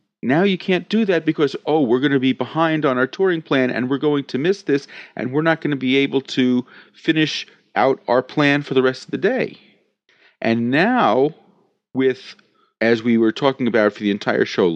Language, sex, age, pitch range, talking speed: English, male, 40-59, 130-195 Hz, 210 wpm